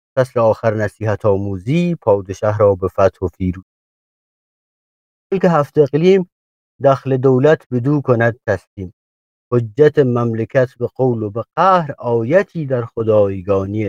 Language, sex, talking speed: English, male, 115 wpm